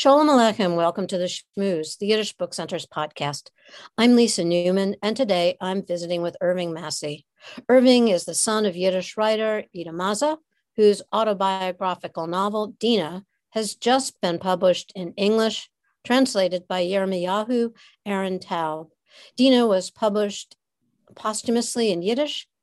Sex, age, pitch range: female, 60-79, 180-225 Hz